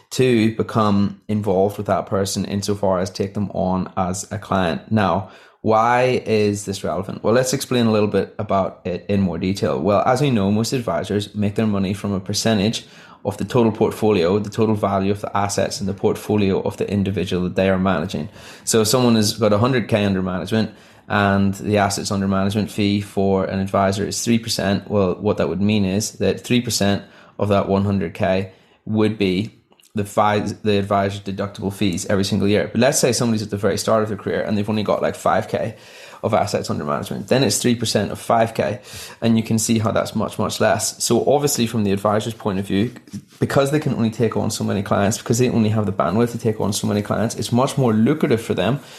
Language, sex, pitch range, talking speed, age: English, male, 100-110 Hz, 210 wpm, 20-39